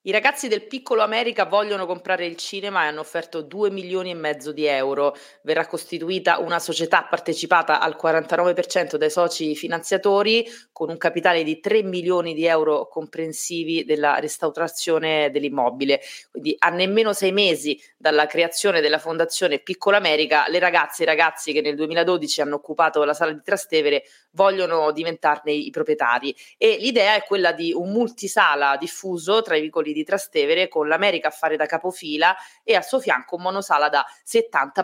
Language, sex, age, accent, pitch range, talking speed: Italian, female, 30-49, native, 150-190 Hz, 165 wpm